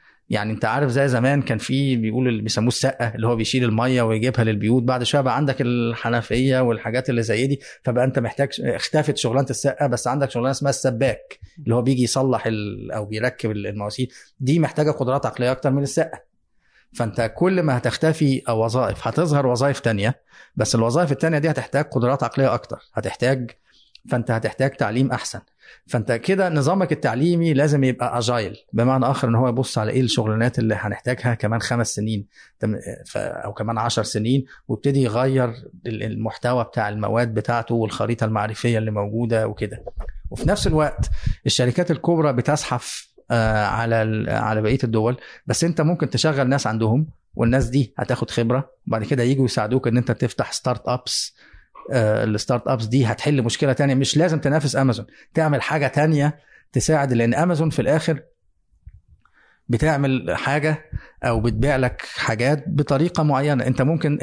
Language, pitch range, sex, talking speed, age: Arabic, 115-140 Hz, male, 155 wpm, 30-49